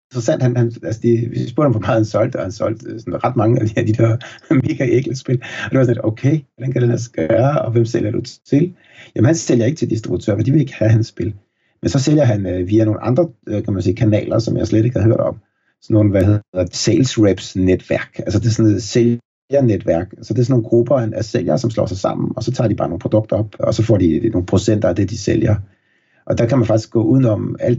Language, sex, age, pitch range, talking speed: Danish, male, 60-79, 110-120 Hz, 265 wpm